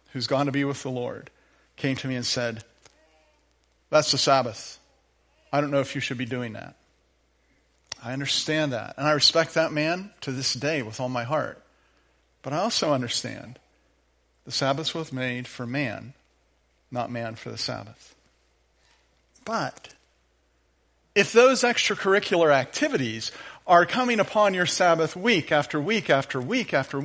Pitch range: 115-170 Hz